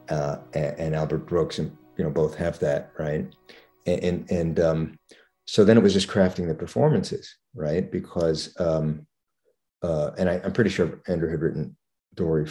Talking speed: 175 wpm